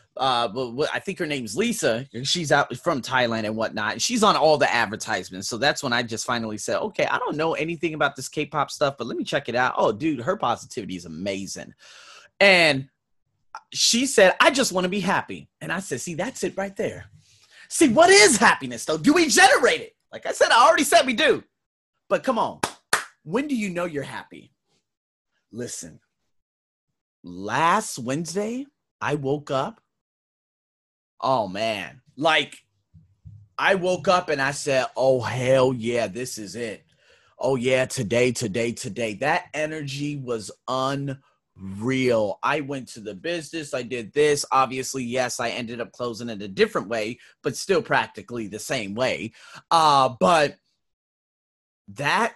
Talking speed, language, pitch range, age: 170 wpm, English, 120-180 Hz, 30-49